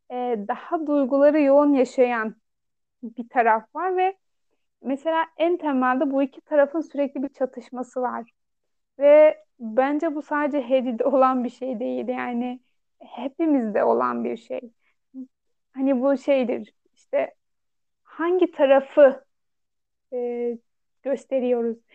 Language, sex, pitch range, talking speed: Turkish, female, 245-290 Hz, 105 wpm